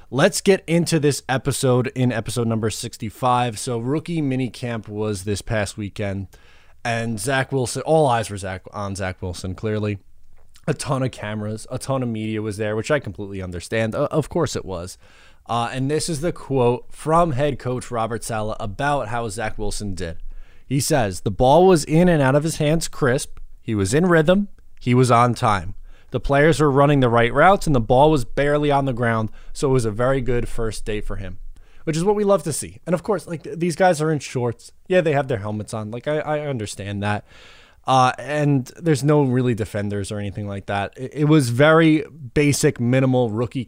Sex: male